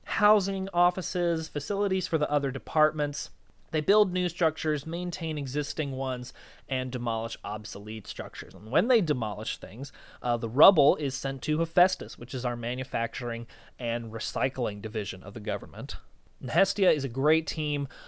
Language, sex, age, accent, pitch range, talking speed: English, male, 30-49, American, 125-175 Hz, 150 wpm